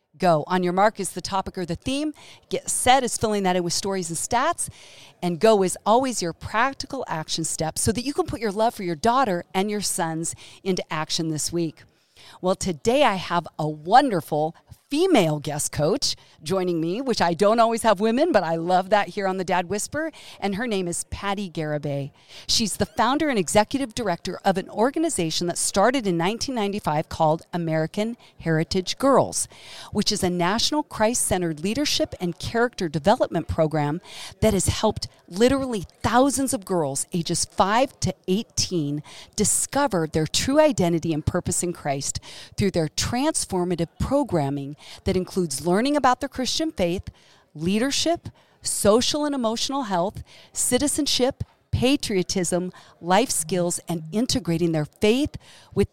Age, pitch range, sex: 40-59, 165-235 Hz, female